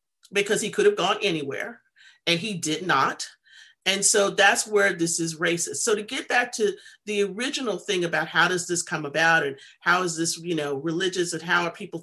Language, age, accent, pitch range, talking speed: English, 40-59, American, 180-265 Hz, 210 wpm